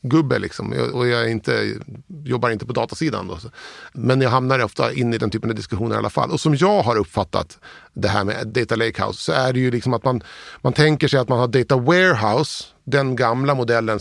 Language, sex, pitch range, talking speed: Swedish, male, 115-140 Hz, 225 wpm